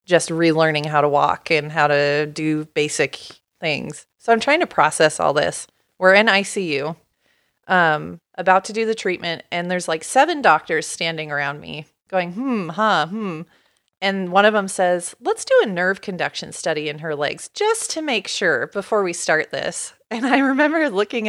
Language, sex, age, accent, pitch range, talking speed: English, female, 30-49, American, 170-210 Hz, 185 wpm